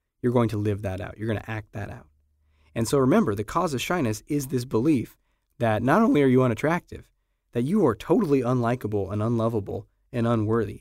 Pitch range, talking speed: 105-130 Hz, 205 wpm